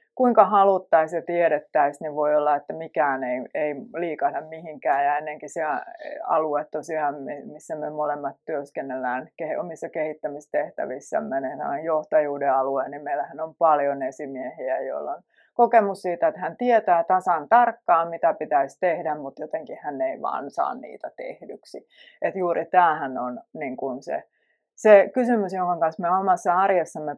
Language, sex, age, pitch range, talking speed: Finnish, female, 30-49, 155-225 Hz, 135 wpm